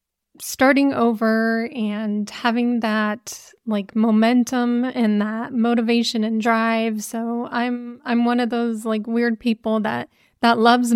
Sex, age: female, 30-49